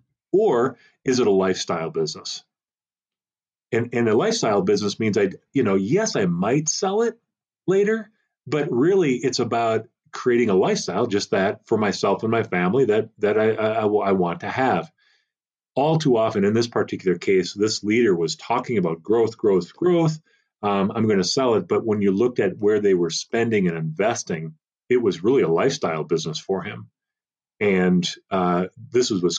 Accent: American